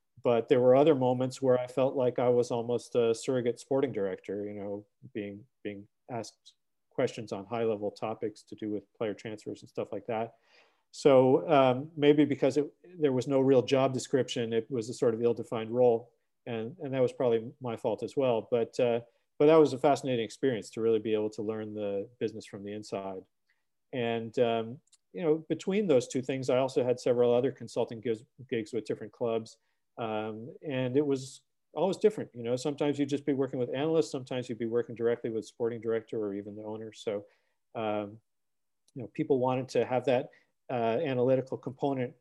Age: 40-59